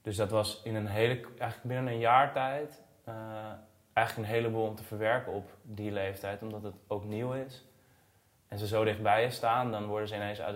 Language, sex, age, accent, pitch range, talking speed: Dutch, male, 20-39, Dutch, 100-115 Hz, 210 wpm